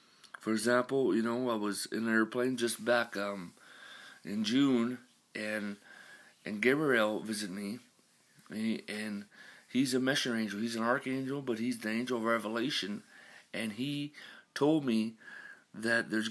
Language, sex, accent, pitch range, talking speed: English, male, American, 115-130 Hz, 150 wpm